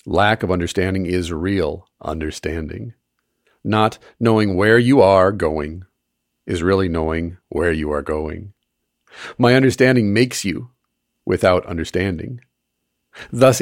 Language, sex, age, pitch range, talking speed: English, male, 40-59, 85-110 Hz, 115 wpm